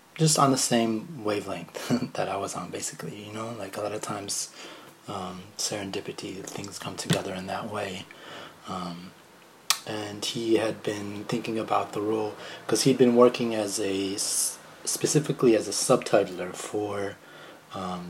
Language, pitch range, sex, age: English, 95-120 Hz, male, 30-49